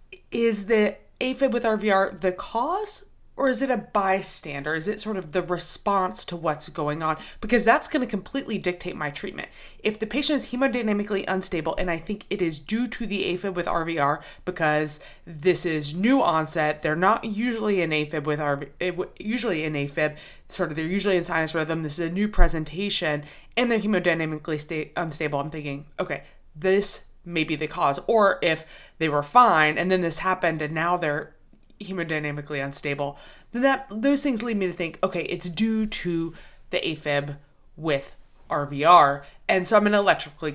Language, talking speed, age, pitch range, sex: Hebrew, 185 wpm, 20-39, 160-210 Hz, female